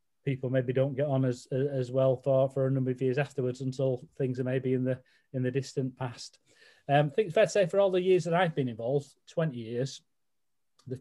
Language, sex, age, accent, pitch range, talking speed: English, male, 30-49, British, 130-150 Hz, 235 wpm